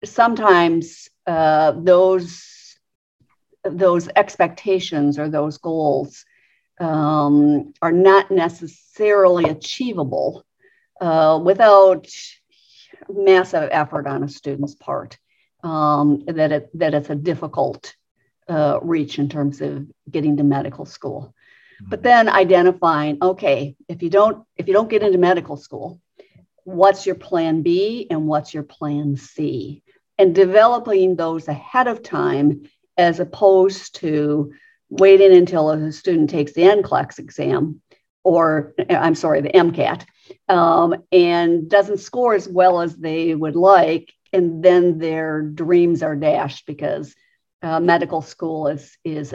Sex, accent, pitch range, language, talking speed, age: female, American, 155-195 Hz, English, 125 wpm, 50-69